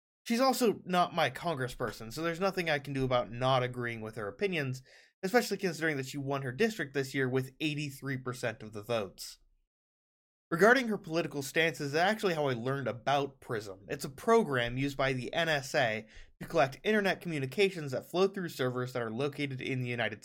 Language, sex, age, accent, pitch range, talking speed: English, male, 20-39, American, 130-185 Hz, 185 wpm